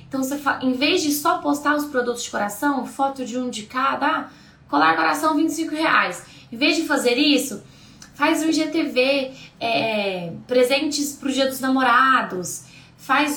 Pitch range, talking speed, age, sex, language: 240-300 Hz, 170 wpm, 10-29, female, Portuguese